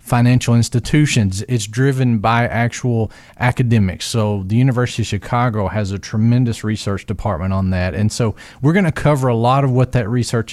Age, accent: 40-59, American